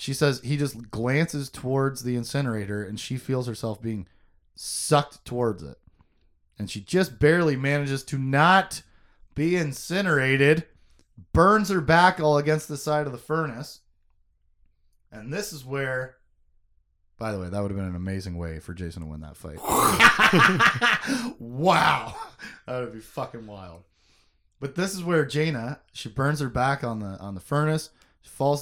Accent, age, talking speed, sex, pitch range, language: American, 20-39, 155 wpm, male, 95-140 Hz, English